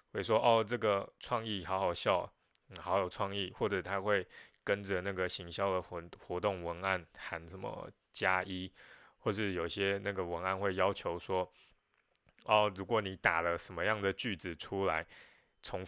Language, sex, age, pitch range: Chinese, male, 20-39, 90-105 Hz